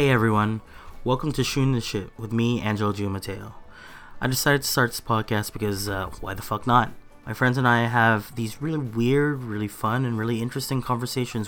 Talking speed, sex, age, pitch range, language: 200 wpm, male, 30-49, 110-135 Hz, English